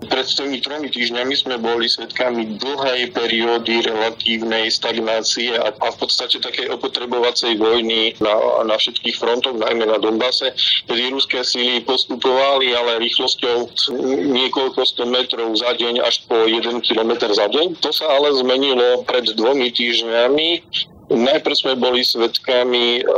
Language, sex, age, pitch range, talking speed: Slovak, male, 40-59, 115-125 Hz, 130 wpm